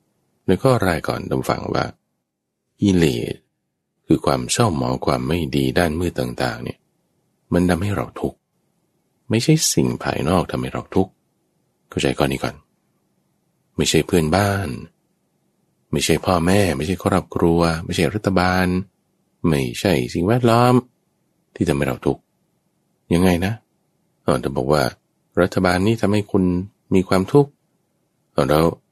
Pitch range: 70-110 Hz